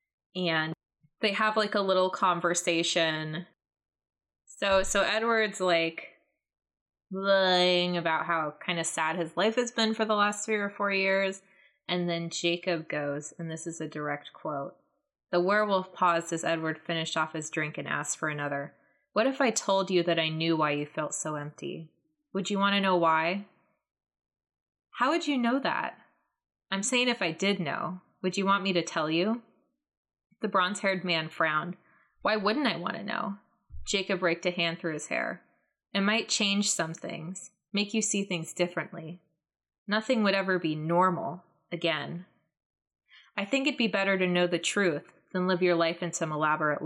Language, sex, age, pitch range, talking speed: English, female, 20-39, 160-200 Hz, 175 wpm